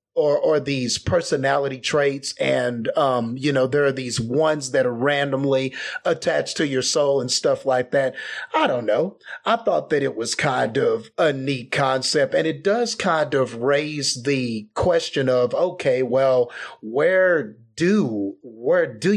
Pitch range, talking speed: 130-185 Hz, 165 wpm